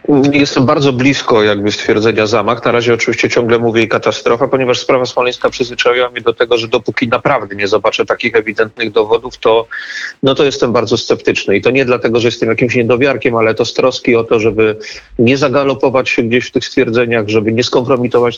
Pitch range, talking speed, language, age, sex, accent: 110-145 Hz, 190 wpm, Polish, 40-59, male, native